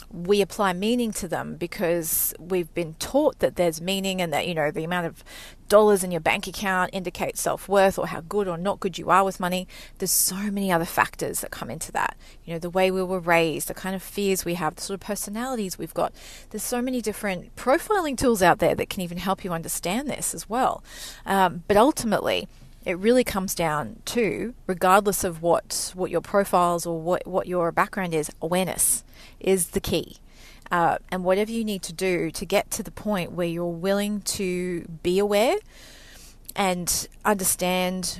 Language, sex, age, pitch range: English, female, 30-49, 175-205 Hz